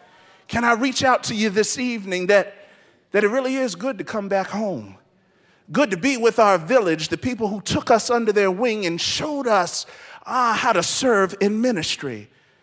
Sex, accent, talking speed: male, American, 195 wpm